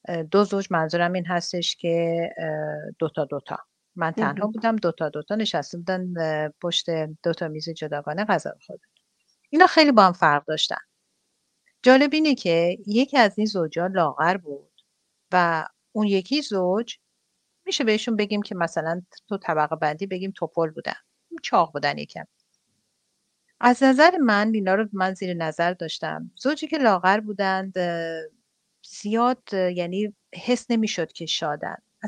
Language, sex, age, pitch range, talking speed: Persian, female, 50-69, 170-215 Hz, 135 wpm